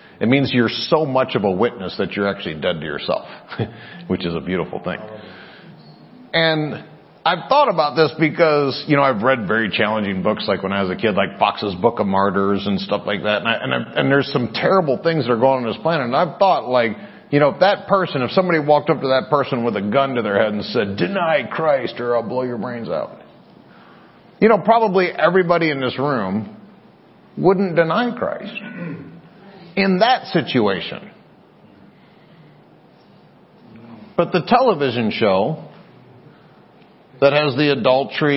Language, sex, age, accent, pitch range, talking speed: English, male, 40-59, American, 120-160 Hz, 180 wpm